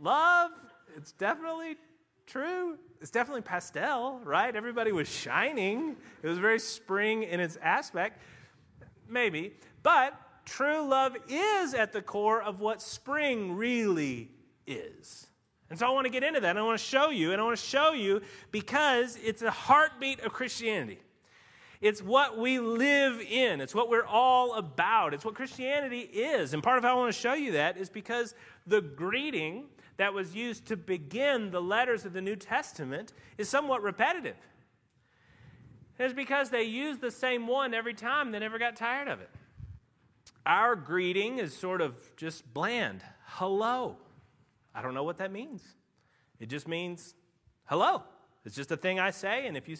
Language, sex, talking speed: English, male, 170 wpm